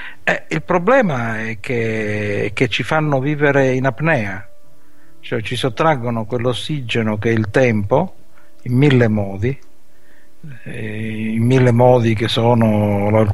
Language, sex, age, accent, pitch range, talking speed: Italian, male, 60-79, native, 110-140 Hz, 130 wpm